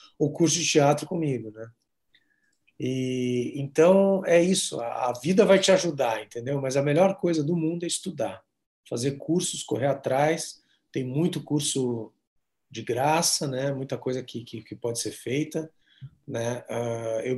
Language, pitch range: Portuguese, 120-165 Hz